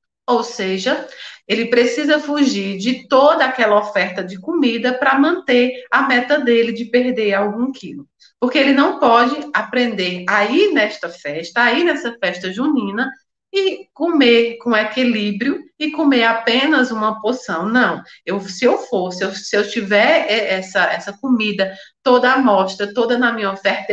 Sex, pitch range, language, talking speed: female, 210-290 Hz, Portuguese, 155 wpm